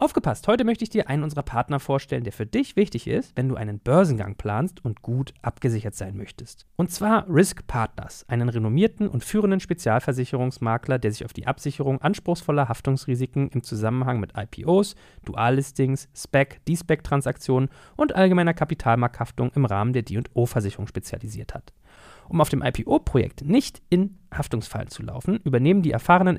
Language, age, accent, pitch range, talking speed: German, 40-59, German, 120-170 Hz, 160 wpm